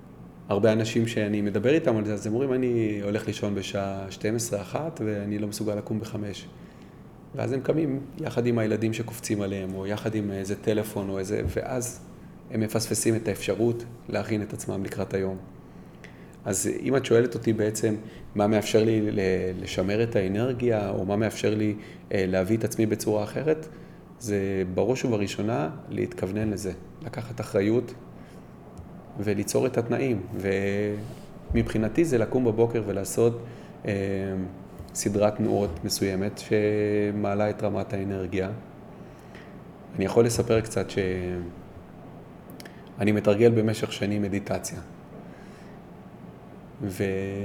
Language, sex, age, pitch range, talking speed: Hebrew, male, 30-49, 100-115 Hz, 125 wpm